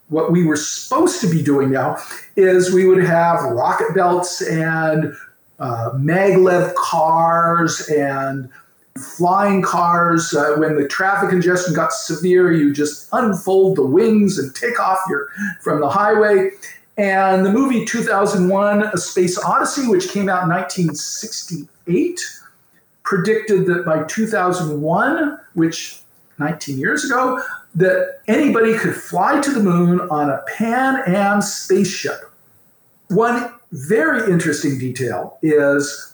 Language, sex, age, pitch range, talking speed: English, male, 50-69, 155-205 Hz, 130 wpm